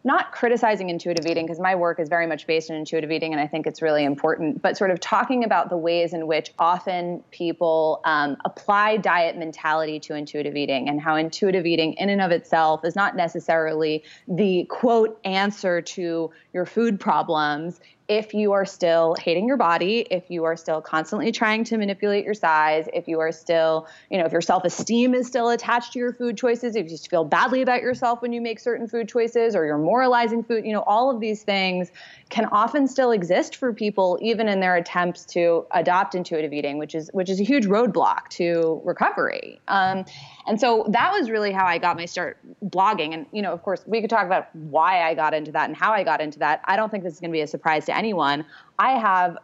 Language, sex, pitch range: English, female, 160-220 Hz